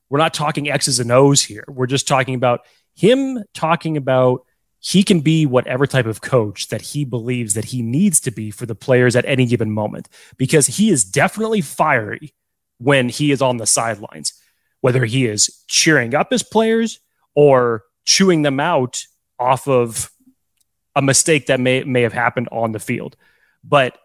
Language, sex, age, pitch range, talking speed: English, male, 30-49, 120-150 Hz, 175 wpm